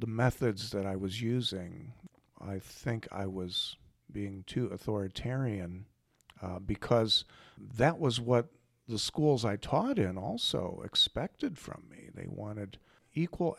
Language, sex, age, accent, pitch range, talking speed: English, male, 50-69, American, 100-130 Hz, 135 wpm